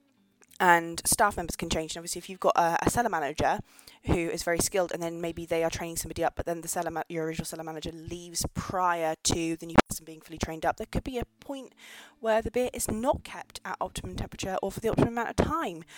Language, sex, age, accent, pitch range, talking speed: English, female, 20-39, British, 165-225 Hz, 245 wpm